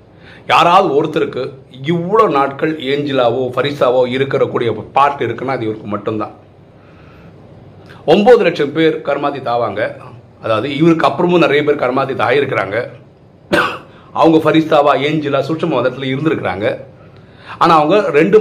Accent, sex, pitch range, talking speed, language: native, male, 130-165 Hz, 65 wpm, Tamil